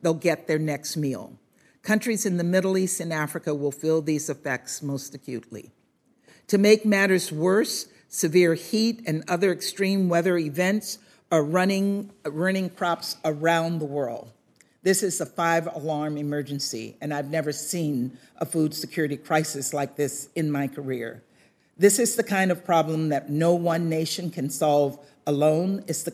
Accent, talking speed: American, 160 wpm